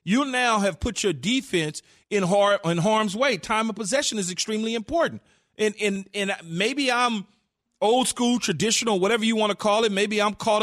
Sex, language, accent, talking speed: male, English, American, 180 wpm